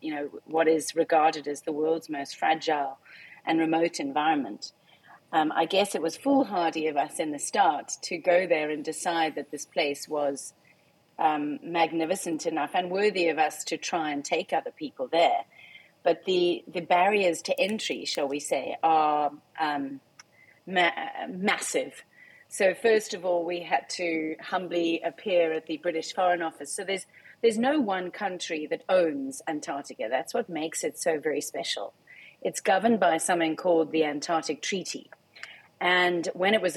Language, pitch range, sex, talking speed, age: English, 155-195 Hz, female, 165 wpm, 30-49